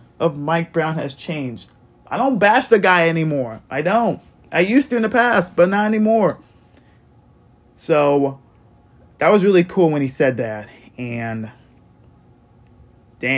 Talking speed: 150 wpm